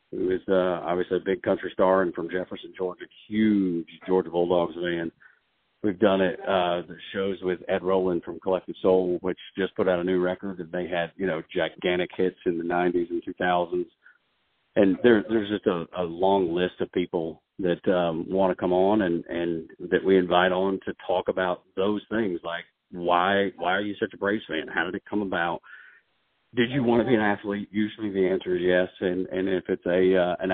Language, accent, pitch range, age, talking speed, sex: English, American, 90-100 Hz, 40-59, 210 wpm, male